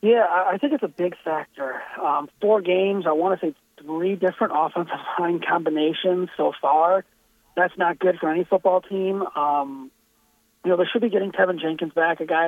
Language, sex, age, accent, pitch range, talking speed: English, male, 30-49, American, 160-190 Hz, 190 wpm